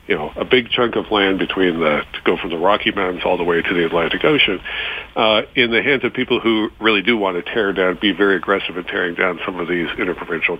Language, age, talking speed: English, 50-69, 255 wpm